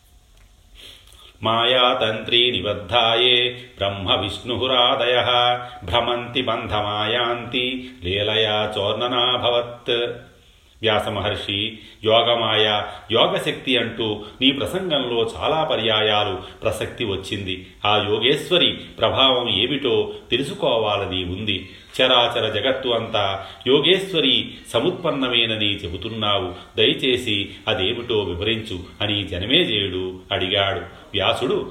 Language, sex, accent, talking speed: Telugu, male, native, 65 wpm